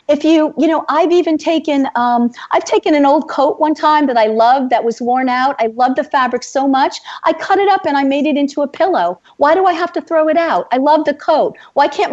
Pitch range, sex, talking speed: 230-300 Hz, female, 260 wpm